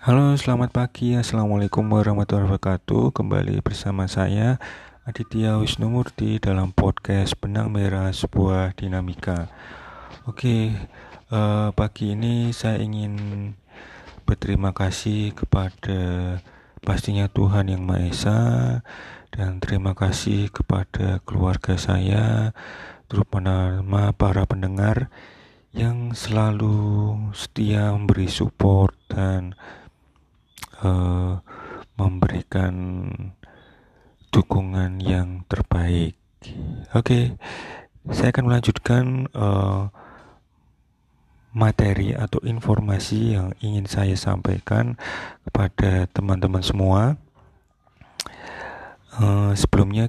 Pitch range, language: 95-110 Hz, Indonesian